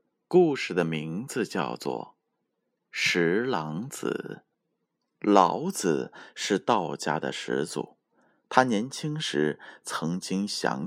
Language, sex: Chinese, male